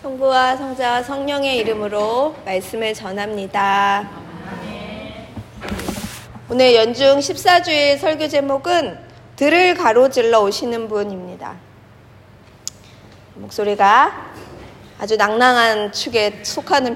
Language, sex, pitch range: Korean, female, 200-275 Hz